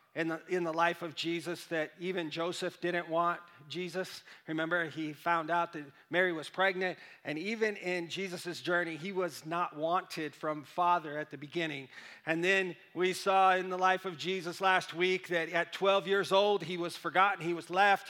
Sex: male